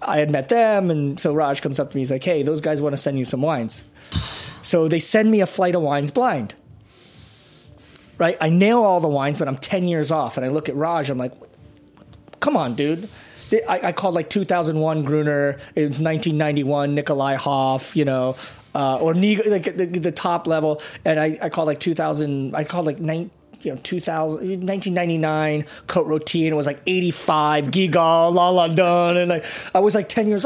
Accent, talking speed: American, 205 wpm